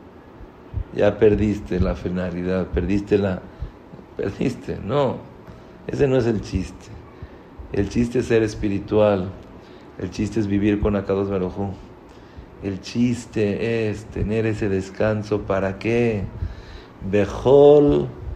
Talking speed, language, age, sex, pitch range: 110 wpm, English, 50-69, male, 95-115 Hz